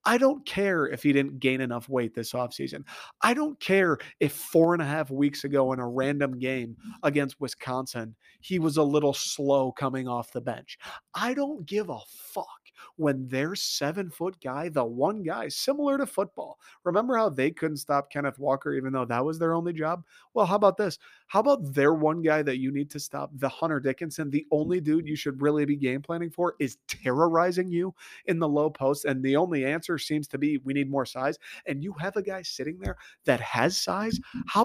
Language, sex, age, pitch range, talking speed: English, male, 30-49, 135-185 Hz, 210 wpm